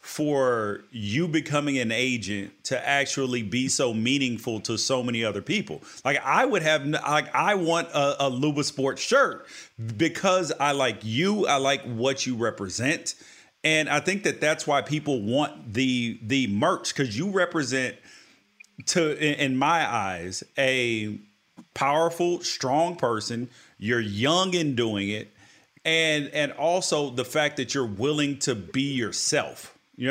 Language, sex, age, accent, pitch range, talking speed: English, male, 40-59, American, 120-150 Hz, 150 wpm